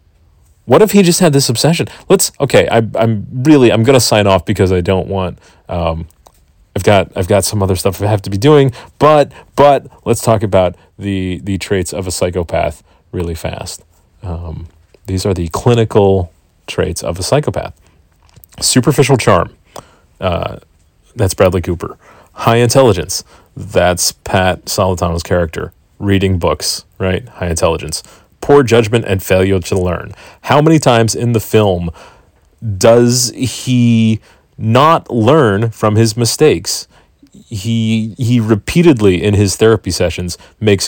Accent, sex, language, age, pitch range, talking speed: American, male, English, 30-49, 90-120 Hz, 145 wpm